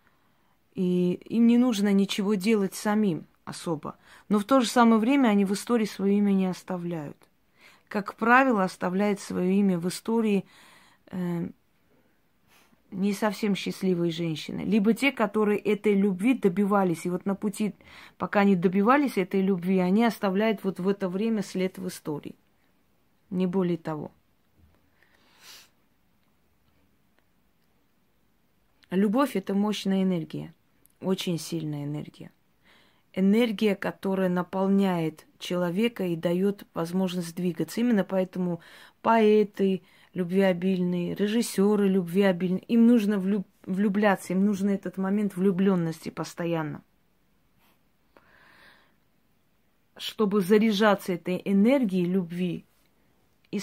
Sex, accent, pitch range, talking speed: female, native, 185-210 Hz, 110 wpm